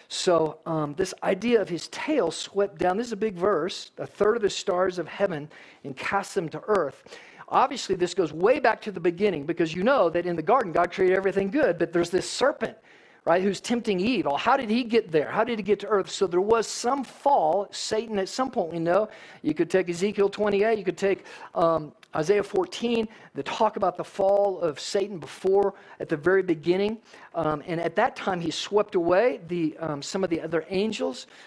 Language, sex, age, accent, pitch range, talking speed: English, male, 50-69, American, 170-215 Hz, 215 wpm